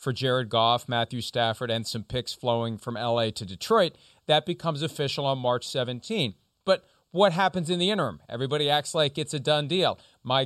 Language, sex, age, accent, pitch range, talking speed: English, male, 40-59, American, 125-150 Hz, 190 wpm